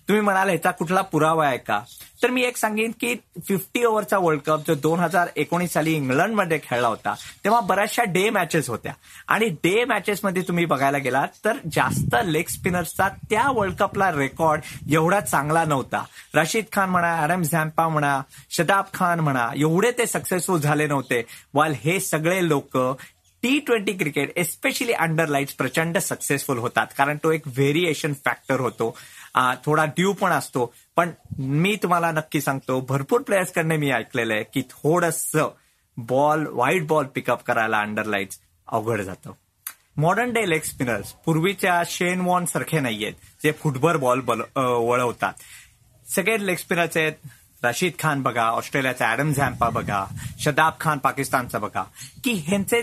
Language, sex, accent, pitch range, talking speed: Marathi, male, native, 135-185 Hz, 155 wpm